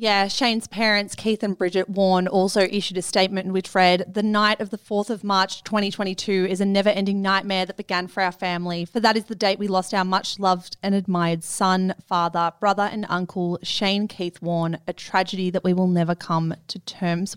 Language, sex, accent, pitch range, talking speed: English, female, Australian, 180-205 Hz, 205 wpm